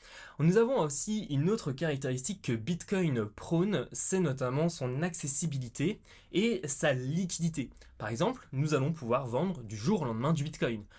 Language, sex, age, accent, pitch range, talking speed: French, male, 20-39, French, 120-175 Hz, 155 wpm